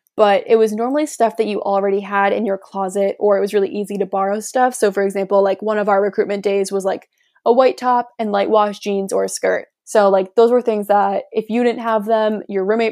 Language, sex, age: English, female, 20-39